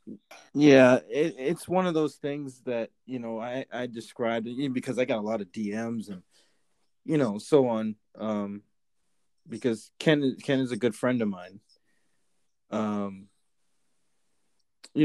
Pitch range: 110-130 Hz